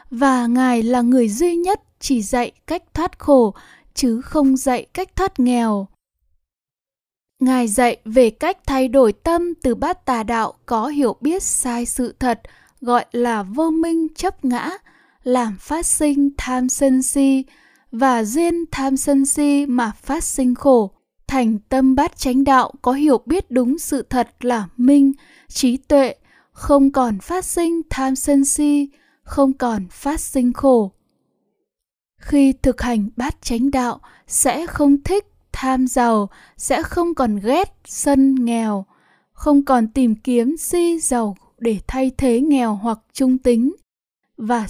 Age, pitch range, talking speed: 10-29, 245-290 Hz, 150 wpm